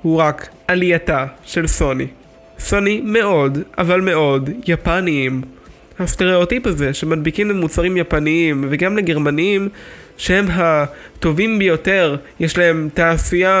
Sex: male